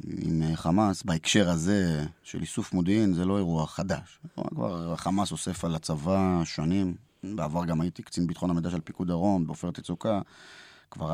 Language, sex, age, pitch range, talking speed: Hebrew, male, 20-39, 85-100 Hz, 155 wpm